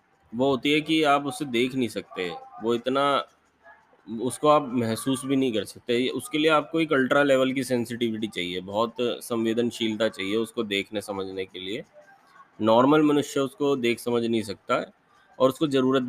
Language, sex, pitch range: Hindi, male, 110-130 Hz